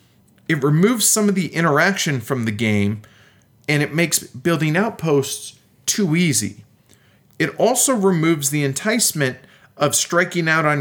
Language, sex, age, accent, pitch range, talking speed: English, male, 40-59, American, 140-195 Hz, 140 wpm